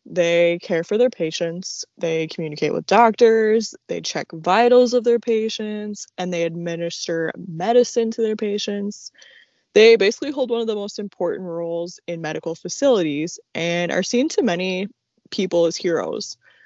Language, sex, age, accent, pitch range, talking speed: English, female, 20-39, American, 170-220 Hz, 150 wpm